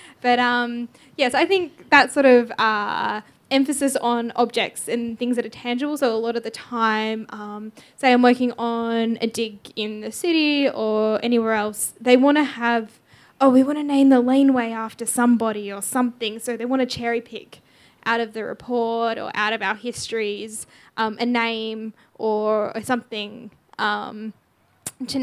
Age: 10-29